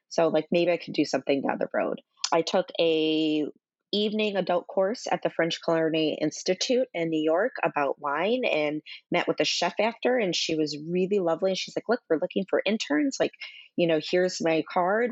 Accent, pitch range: American, 150-185 Hz